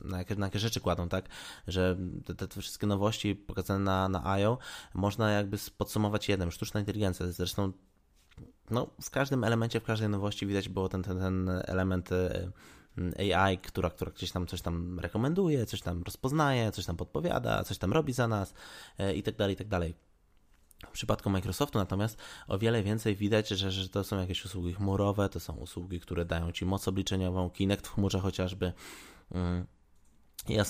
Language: Polish